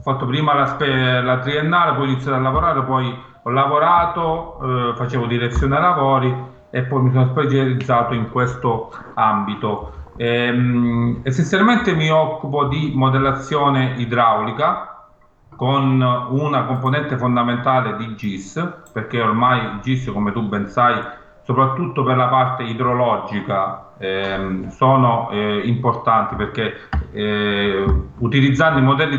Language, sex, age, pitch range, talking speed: Italian, male, 40-59, 115-135 Hz, 125 wpm